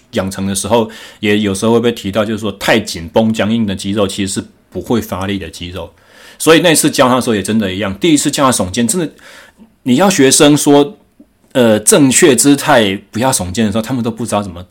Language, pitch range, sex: Chinese, 100-135 Hz, male